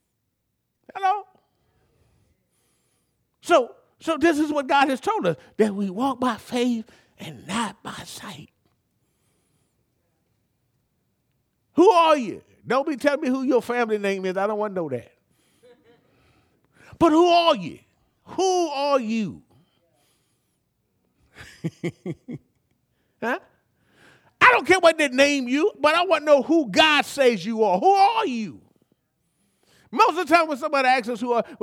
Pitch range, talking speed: 195-275 Hz, 140 wpm